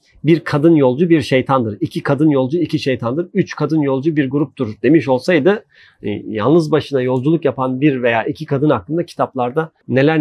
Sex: male